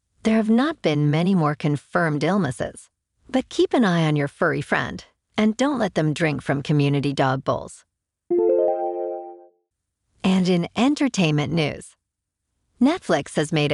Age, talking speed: 50-69, 140 wpm